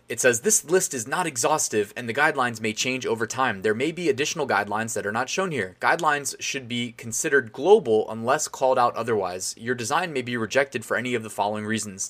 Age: 20-39